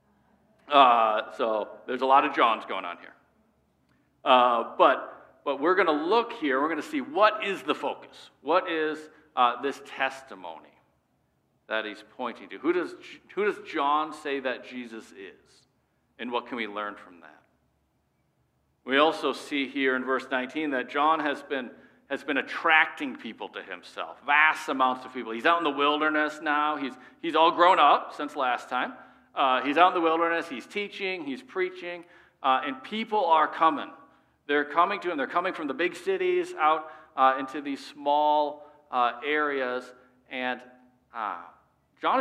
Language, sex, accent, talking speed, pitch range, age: English, male, American, 170 wpm, 130-200 Hz, 50-69